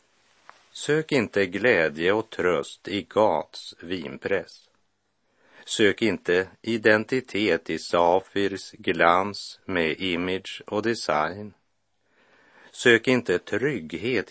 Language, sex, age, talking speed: Swedish, male, 50-69, 90 wpm